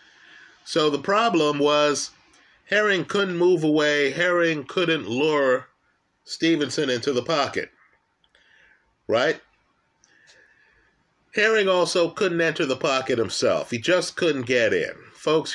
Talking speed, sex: 110 wpm, male